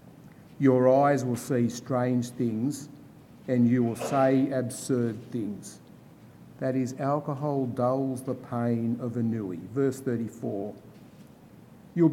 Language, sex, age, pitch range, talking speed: English, male, 50-69, 120-140 Hz, 120 wpm